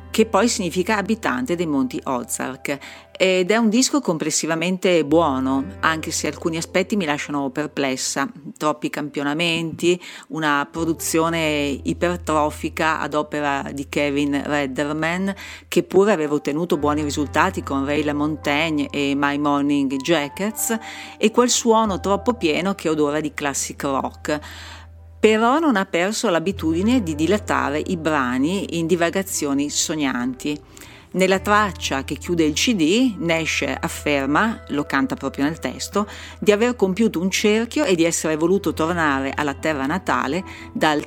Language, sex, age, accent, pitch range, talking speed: Italian, female, 50-69, native, 145-195 Hz, 135 wpm